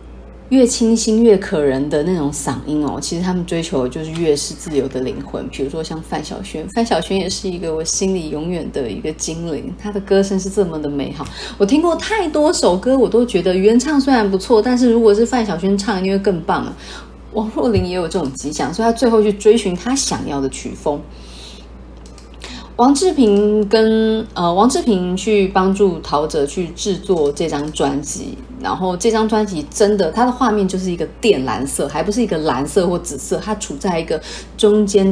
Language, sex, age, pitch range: Chinese, female, 30-49, 150-215 Hz